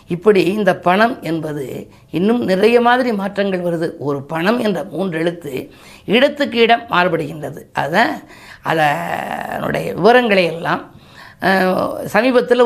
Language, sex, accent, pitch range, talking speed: Tamil, female, native, 160-205 Hz, 100 wpm